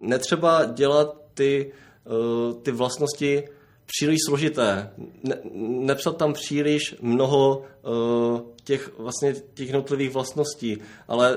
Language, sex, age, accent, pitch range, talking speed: Czech, male, 20-39, native, 120-145 Hz, 85 wpm